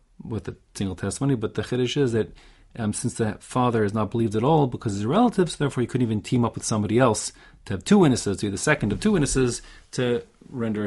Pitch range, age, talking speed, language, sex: 100-140 Hz, 30-49, 245 wpm, English, male